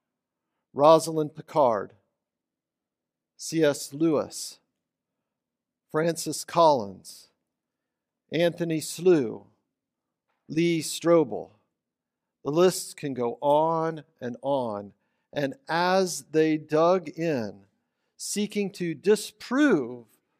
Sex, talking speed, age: male, 75 wpm, 50-69